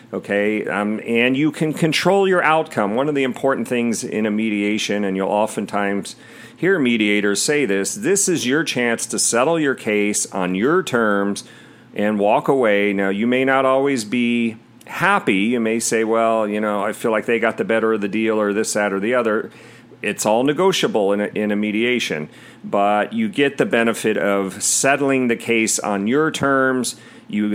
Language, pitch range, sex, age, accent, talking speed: English, 105-130 Hz, male, 40-59, American, 190 wpm